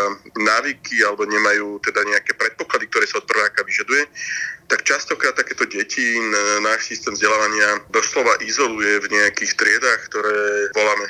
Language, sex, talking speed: Slovak, male, 135 wpm